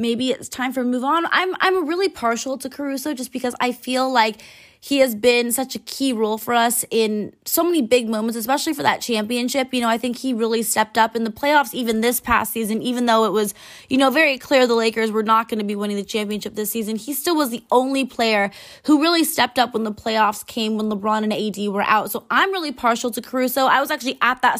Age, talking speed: 20-39, 245 wpm